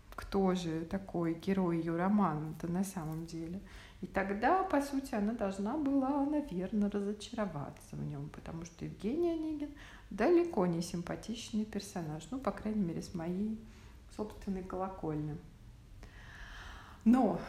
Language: Russian